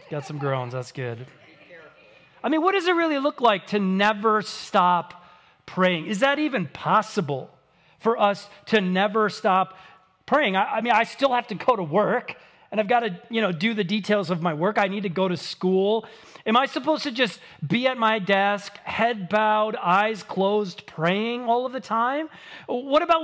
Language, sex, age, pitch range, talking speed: English, male, 30-49, 175-245 Hz, 195 wpm